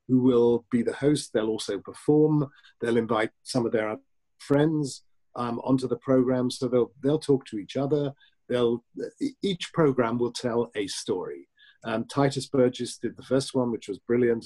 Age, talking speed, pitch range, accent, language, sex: 50-69, 175 wpm, 115-140 Hz, British, English, male